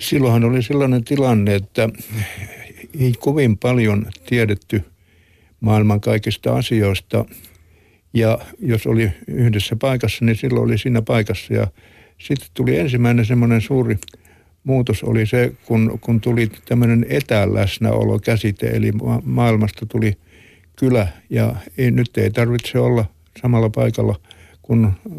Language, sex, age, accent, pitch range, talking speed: Finnish, male, 60-79, native, 105-120 Hz, 115 wpm